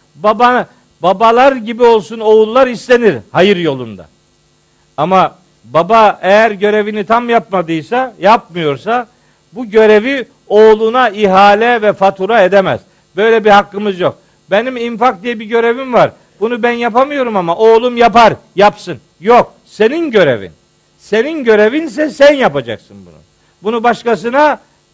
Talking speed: 120 wpm